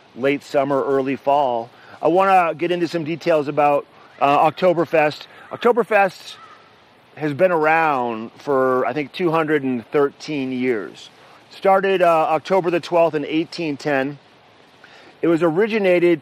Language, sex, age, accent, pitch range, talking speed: English, male, 40-59, American, 130-165 Hz, 120 wpm